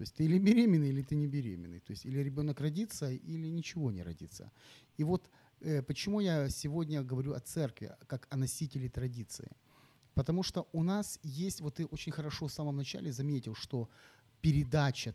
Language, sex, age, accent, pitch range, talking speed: Ukrainian, male, 30-49, native, 125-160 Hz, 180 wpm